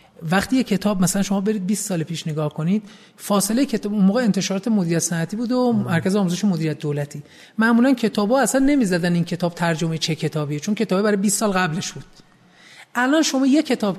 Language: Persian